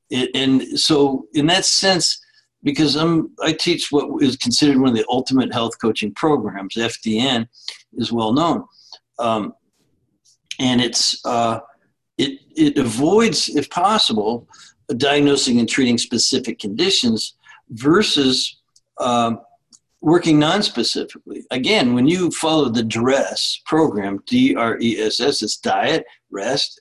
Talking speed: 110 wpm